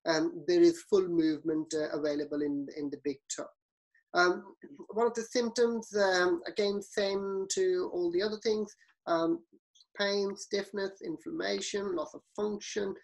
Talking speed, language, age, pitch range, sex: 150 wpm, English, 30-49, 170-235 Hz, male